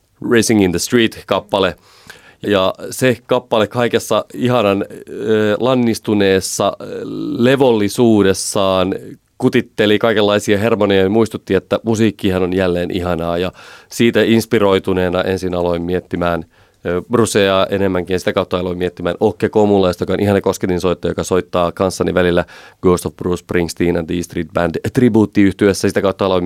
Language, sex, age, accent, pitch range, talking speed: Finnish, male, 30-49, native, 90-110 Hz, 130 wpm